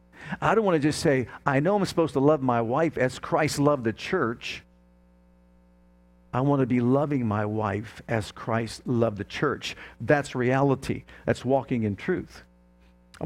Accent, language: American, English